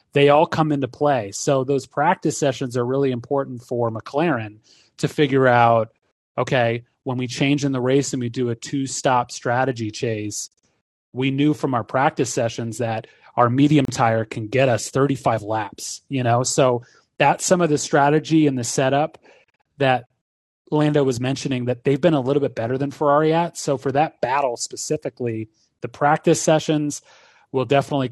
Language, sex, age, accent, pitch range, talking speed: English, male, 30-49, American, 120-150 Hz, 175 wpm